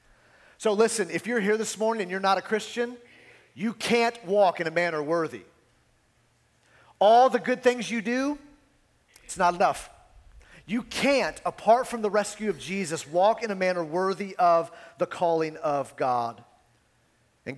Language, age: English, 40-59